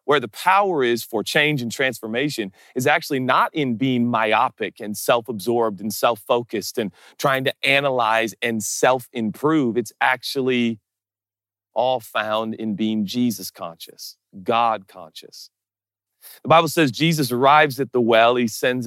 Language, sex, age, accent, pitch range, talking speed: English, male, 40-59, American, 105-140 Hz, 140 wpm